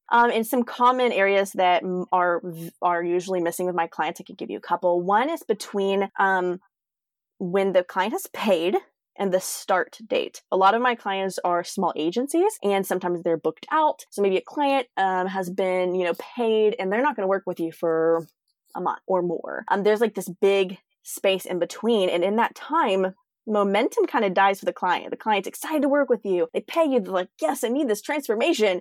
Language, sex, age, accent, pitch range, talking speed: English, female, 20-39, American, 185-280 Hz, 215 wpm